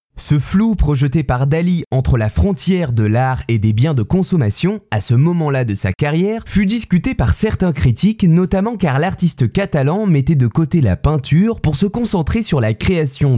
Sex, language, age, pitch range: male, French, 20-39, 125-185 Hz